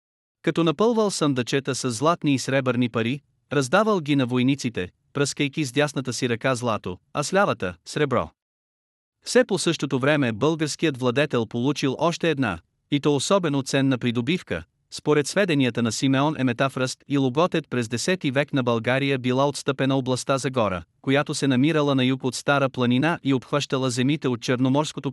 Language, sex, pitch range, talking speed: Bulgarian, male, 125-150 Hz, 155 wpm